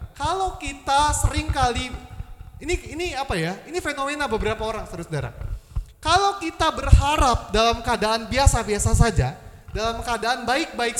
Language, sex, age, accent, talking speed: Indonesian, male, 20-39, native, 125 wpm